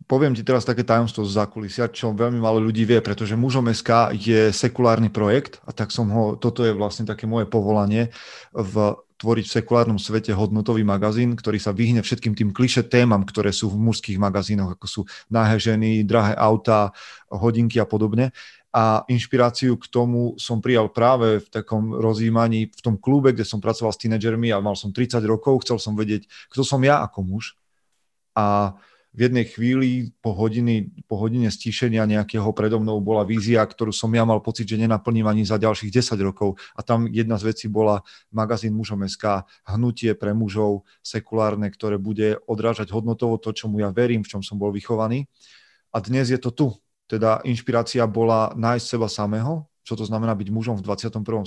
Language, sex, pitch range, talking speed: Slovak, male, 105-115 Hz, 185 wpm